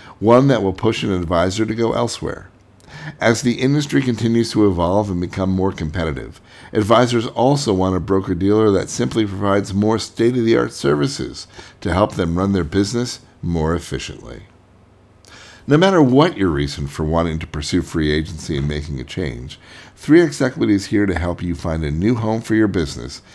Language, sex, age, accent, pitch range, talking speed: English, male, 50-69, American, 85-115 Hz, 175 wpm